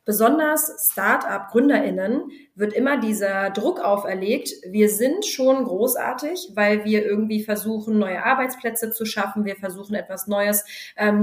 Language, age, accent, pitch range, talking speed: German, 20-39, German, 210-250 Hz, 130 wpm